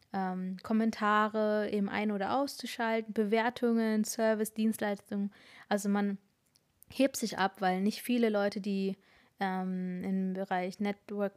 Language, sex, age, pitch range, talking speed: German, female, 20-39, 195-225 Hz, 120 wpm